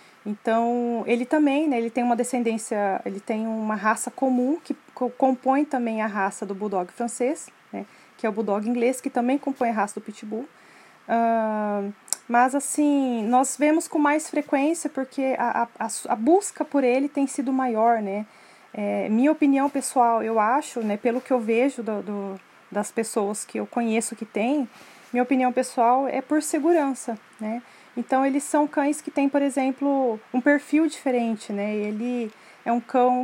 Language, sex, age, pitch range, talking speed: Portuguese, female, 20-39, 225-280 Hz, 175 wpm